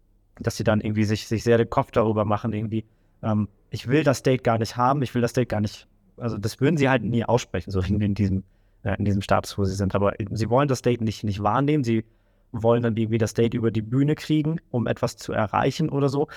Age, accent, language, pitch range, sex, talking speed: 20-39, German, German, 100-125 Hz, male, 240 wpm